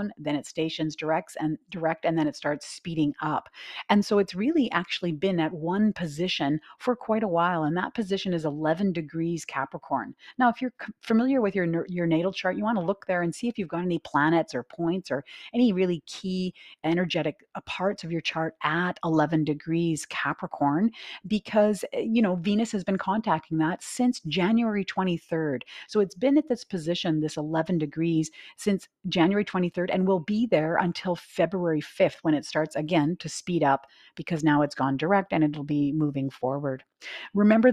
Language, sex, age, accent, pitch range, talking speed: English, female, 40-59, American, 155-195 Hz, 185 wpm